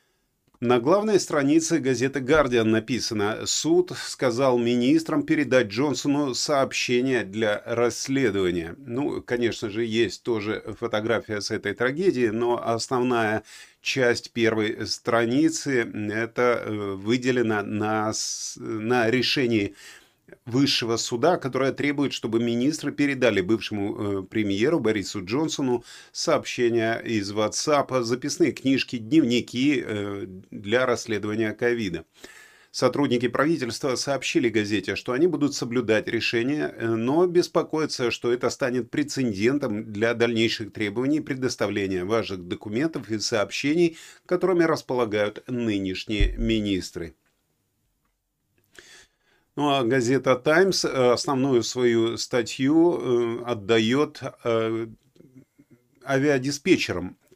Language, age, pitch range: Russian, 30-49, 110-140 Hz